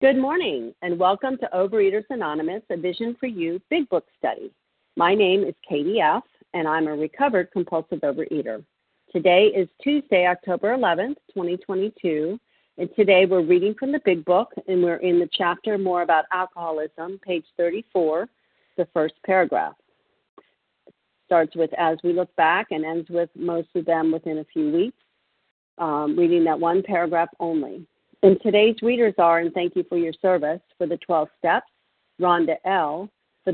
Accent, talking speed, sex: American, 165 wpm, female